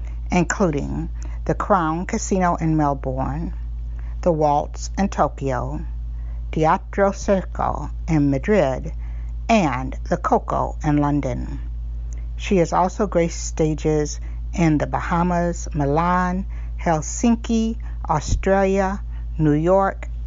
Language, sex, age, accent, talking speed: English, female, 50-69, American, 95 wpm